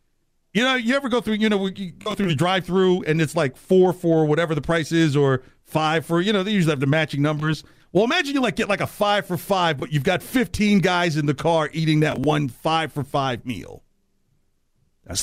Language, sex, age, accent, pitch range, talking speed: English, male, 50-69, American, 130-220 Hz, 235 wpm